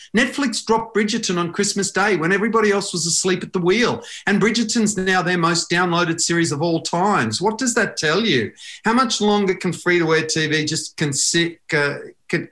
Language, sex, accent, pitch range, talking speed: English, male, Australian, 155-195 Hz, 200 wpm